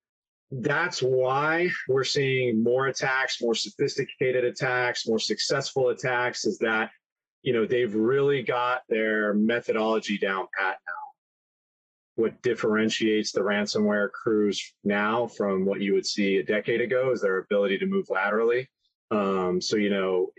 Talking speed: 140 wpm